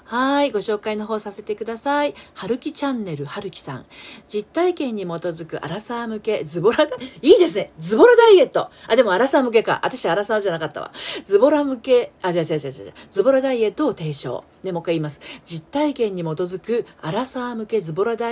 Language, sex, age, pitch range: Japanese, female, 40-59, 185-270 Hz